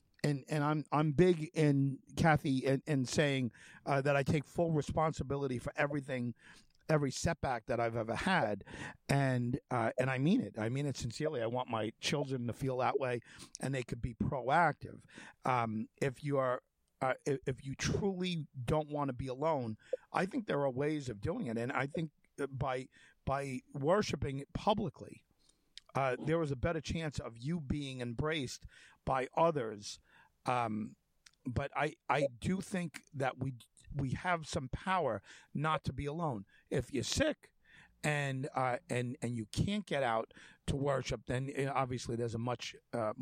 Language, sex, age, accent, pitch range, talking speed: English, male, 50-69, American, 125-150 Hz, 170 wpm